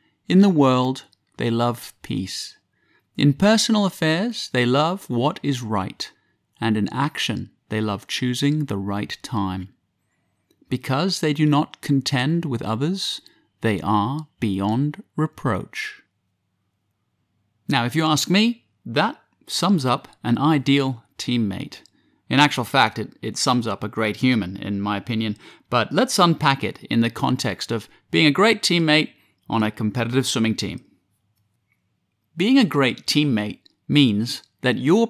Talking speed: 140 wpm